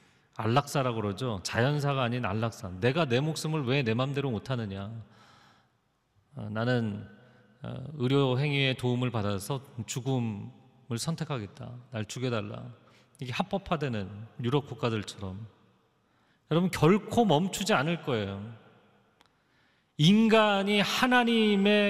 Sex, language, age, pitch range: male, Korean, 40-59, 115-180 Hz